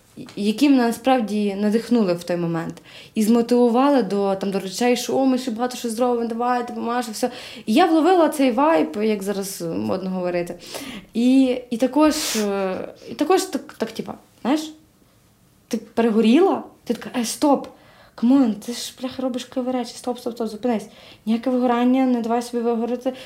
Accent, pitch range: native, 200-250 Hz